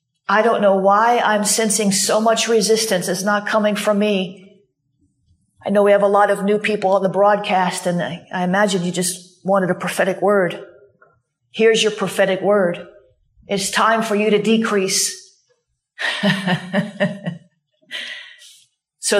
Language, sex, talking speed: English, female, 145 wpm